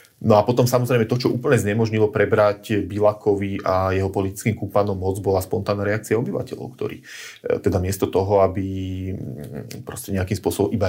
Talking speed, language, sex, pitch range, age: 155 wpm, Slovak, male, 95-105 Hz, 30-49